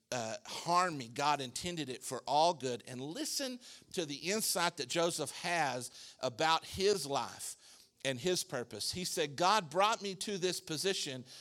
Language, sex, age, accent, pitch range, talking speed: English, male, 50-69, American, 145-215 Hz, 165 wpm